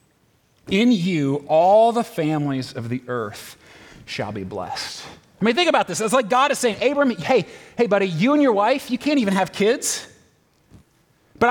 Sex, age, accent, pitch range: male, 30-49, American, 165-240 Hz